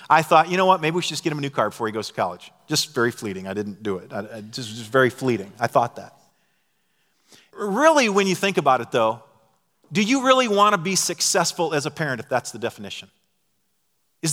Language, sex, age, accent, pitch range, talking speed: English, male, 40-59, American, 115-155 Hz, 230 wpm